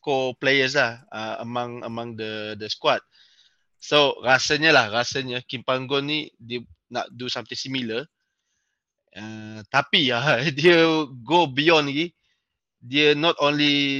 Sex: male